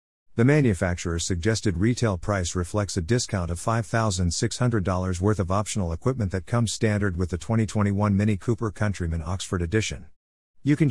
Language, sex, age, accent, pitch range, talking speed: English, male, 50-69, American, 90-110 Hz, 150 wpm